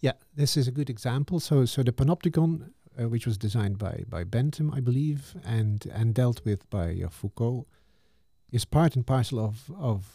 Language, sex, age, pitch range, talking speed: English, male, 50-69, 100-135 Hz, 190 wpm